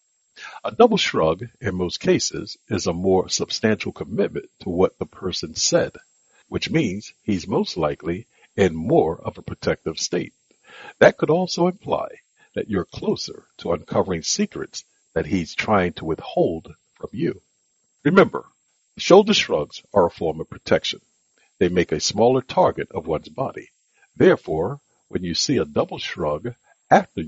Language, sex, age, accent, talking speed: English, male, 60-79, American, 150 wpm